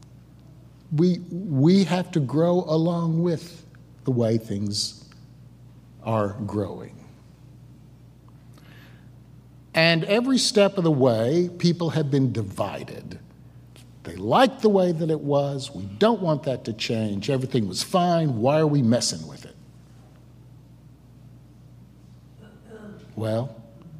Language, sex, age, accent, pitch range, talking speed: English, male, 60-79, American, 120-160 Hz, 115 wpm